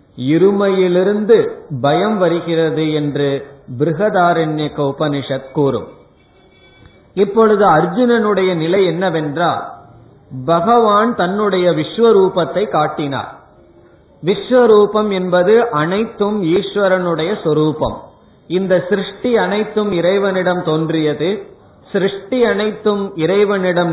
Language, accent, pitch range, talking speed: Tamil, native, 160-205 Hz, 70 wpm